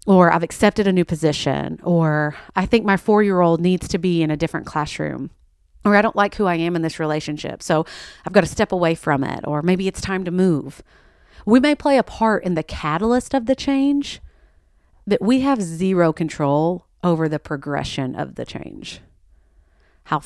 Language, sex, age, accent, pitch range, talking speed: English, female, 30-49, American, 140-190 Hz, 195 wpm